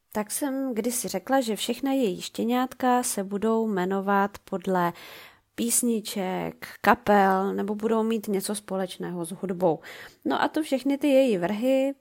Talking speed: 145 wpm